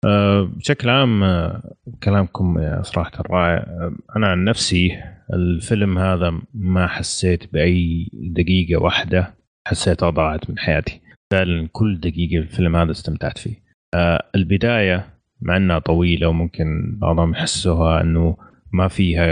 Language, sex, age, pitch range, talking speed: Arabic, male, 30-49, 85-110 Hz, 130 wpm